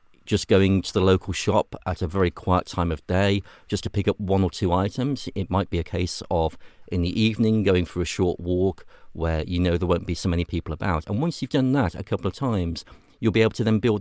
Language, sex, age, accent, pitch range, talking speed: English, male, 40-59, British, 90-105 Hz, 255 wpm